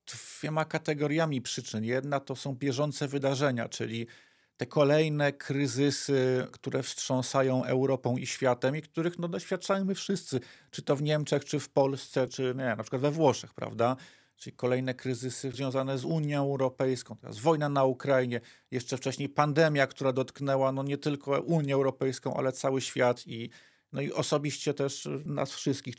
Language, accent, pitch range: Polish, native, 130-150 Hz